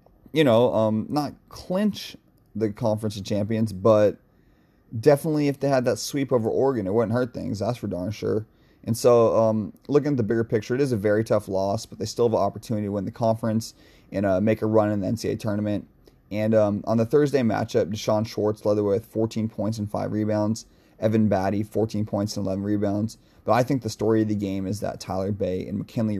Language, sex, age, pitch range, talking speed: English, male, 30-49, 100-115 Hz, 220 wpm